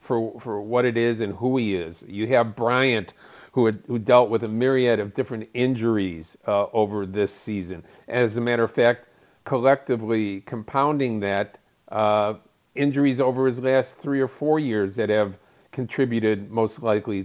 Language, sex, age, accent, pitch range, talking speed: English, male, 50-69, American, 110-130 Hz, 165 wpm